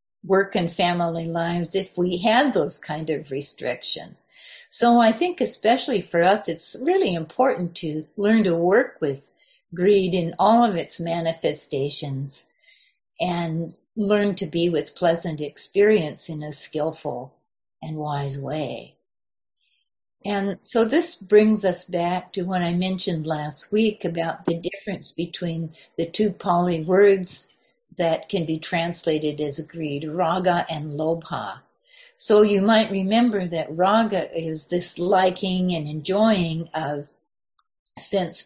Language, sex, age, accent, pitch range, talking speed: English, female, 60-79, American, 160-205 Hz, 135 wpm